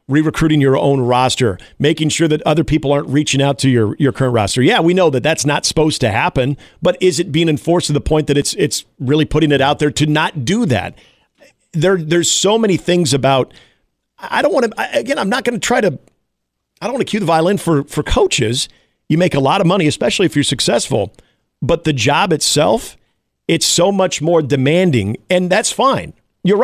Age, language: 40-59, English